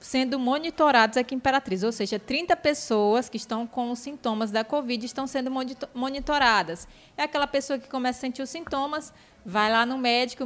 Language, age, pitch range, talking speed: Portuguese, 20-39, 220-265 Hz, 185 wpm